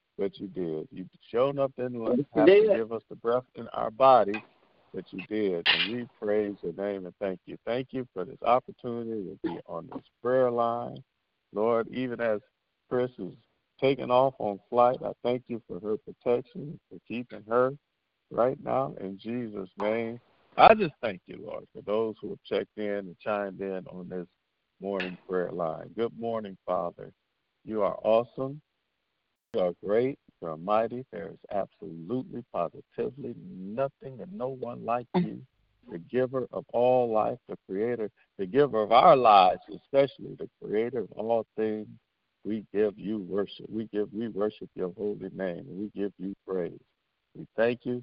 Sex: male